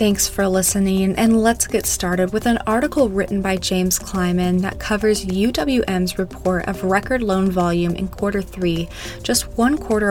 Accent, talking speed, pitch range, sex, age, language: American, 165 wpm, 180-215 Hz, female, 20-39, English